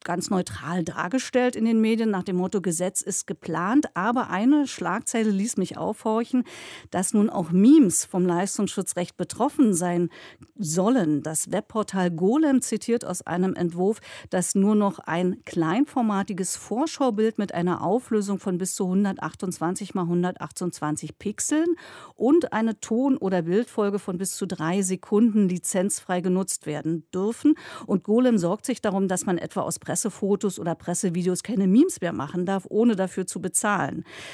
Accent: German